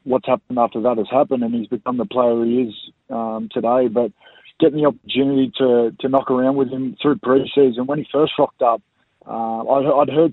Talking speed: 210 wpm